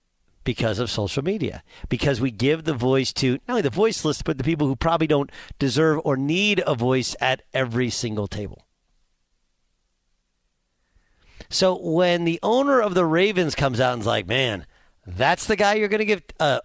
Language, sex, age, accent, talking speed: English, male, 50-69, American, 175 wpm